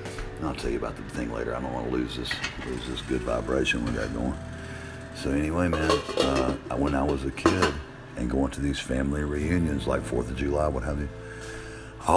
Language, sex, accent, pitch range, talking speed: English, male, American, 65-90 Hz, 205 wpm